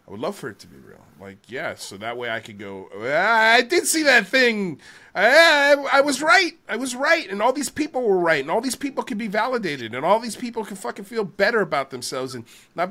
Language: English